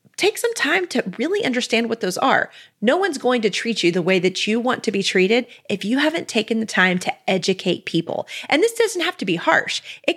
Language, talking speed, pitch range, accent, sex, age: English, 235 wpm, 190-280 Hz, American, female, 30-49